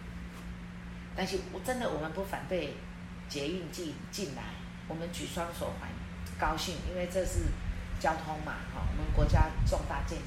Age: 30-49